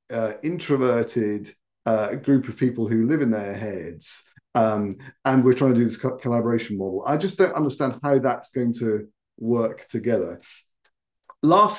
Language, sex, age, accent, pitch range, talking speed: English, male, 50-69, British, 115-150 Hz, 165 wpm